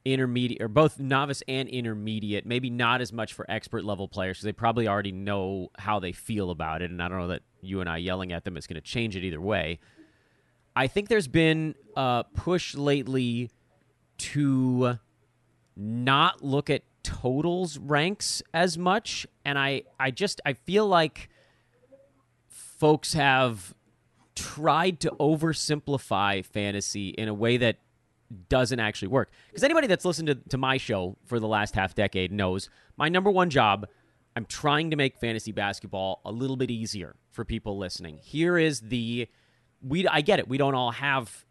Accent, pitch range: American, 100-140 Hz